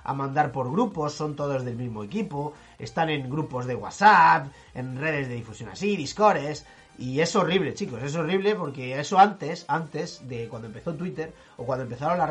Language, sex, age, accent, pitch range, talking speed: Spanish, male, 30-49, Spanish, 135-175 Hz, 185 wpm